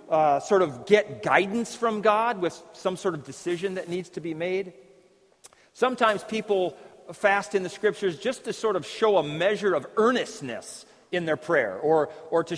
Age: 40-59